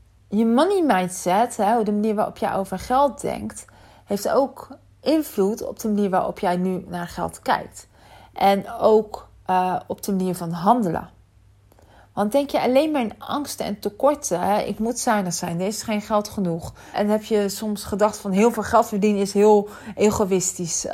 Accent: Dutch